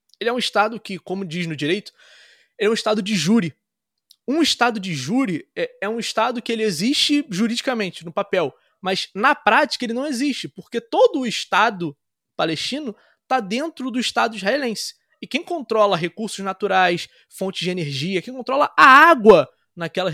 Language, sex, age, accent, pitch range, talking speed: Portuguese, male, 20-39, Brazilian, 185-260 Hz, 165 wpm